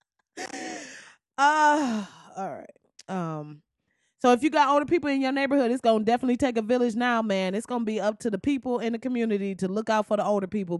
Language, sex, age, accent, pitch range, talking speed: English, female, 20-39, American, 155-235 Hz, 220 wpm